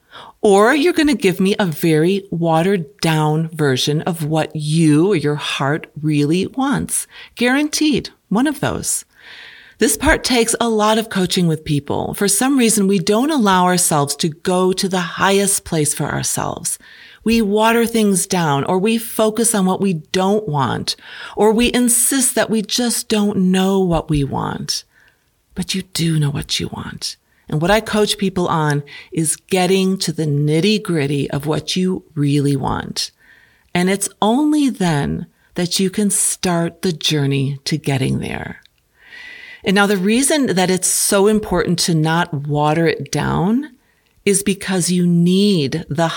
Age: 40-59